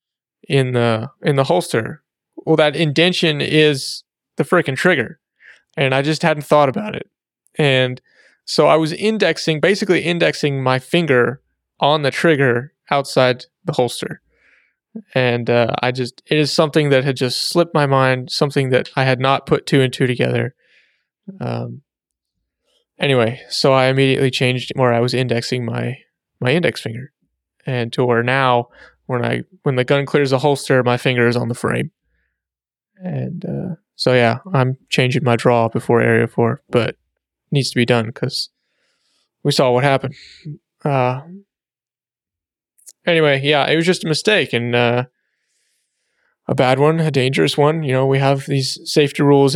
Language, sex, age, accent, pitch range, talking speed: English, male, 20-39, American, 125-150 Hz, 160 wpm